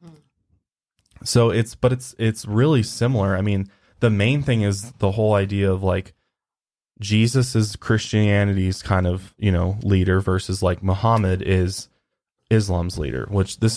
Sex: male